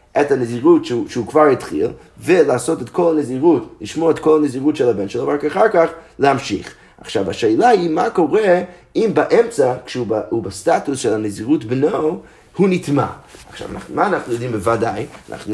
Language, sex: Hebrew, male